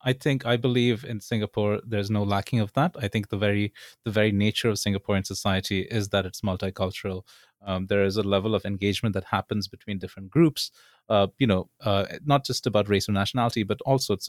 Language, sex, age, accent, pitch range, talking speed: English, male, 30-49, Indian, 100-115 Hz, 210 wpm